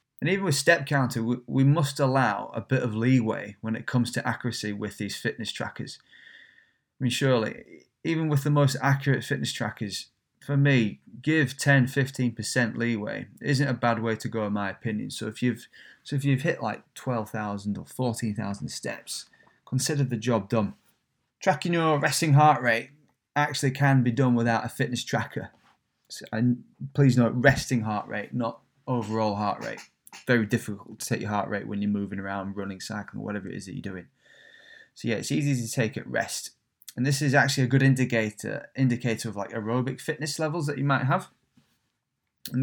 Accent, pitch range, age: British, 115-140 Hz, 20-39